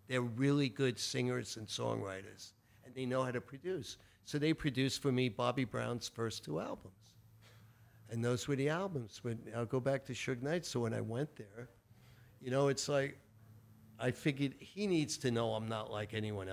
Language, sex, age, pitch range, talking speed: English, male, 50-69, 115-150 Hz, 190 wpm